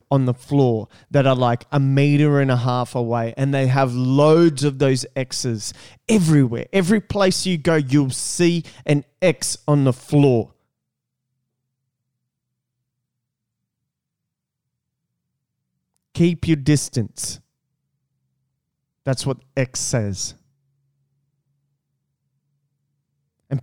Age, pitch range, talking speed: 30-49, 130-160 Hz, 100 wpm